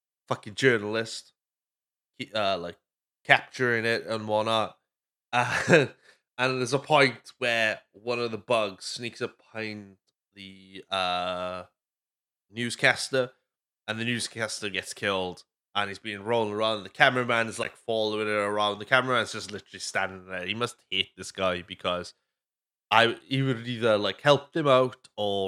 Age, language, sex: 20-39, English, male